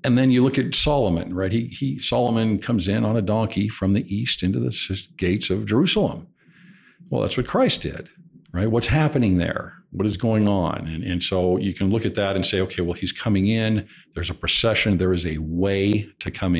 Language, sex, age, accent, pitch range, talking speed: English, male, 50-69, American, 90-110 Hz, 215 wpm